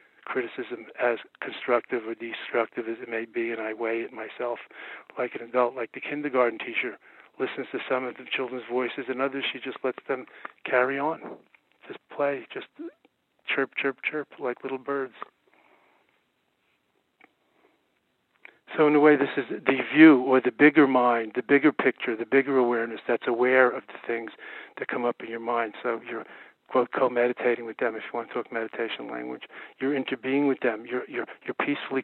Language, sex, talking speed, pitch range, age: English, male, 180 wpm, 115-135 Hz, 40-59